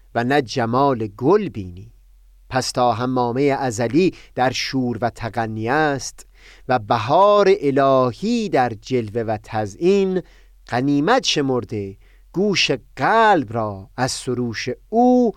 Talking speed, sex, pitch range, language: 115 wpm, male, 115-170 Hz, Persian